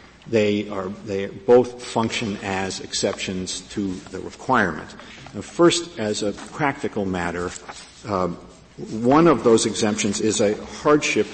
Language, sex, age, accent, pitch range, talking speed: English, male, 50-69, American, 100-115 Hz, 125 wpm